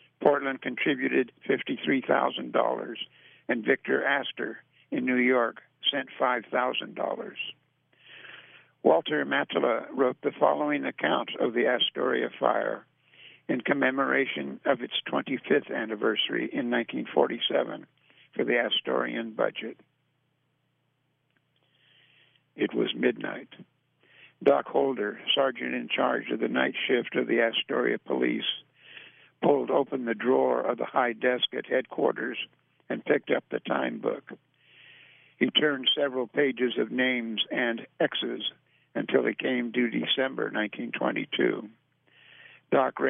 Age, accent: 60-79, American